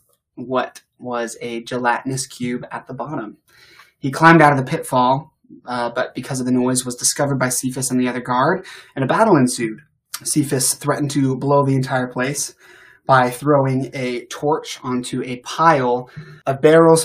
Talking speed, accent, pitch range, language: 170 wpm, American, 125-145 Hz, English